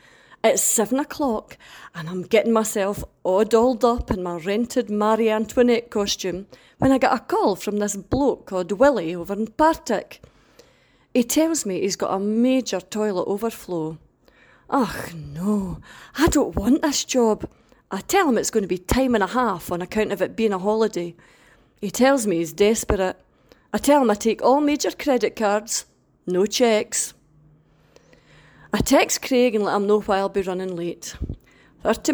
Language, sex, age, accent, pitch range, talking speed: English, female, 40-59, British, 185-250 Hz, 170 wpm